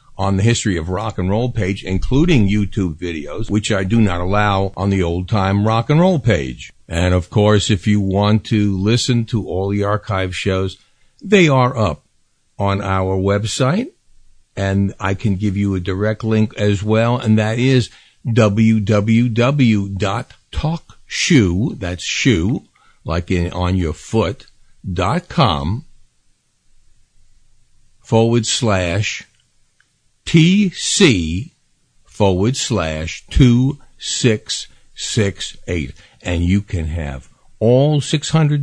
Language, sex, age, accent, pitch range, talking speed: English, male, 60-79, American, 95-115 Hz, 125 wpm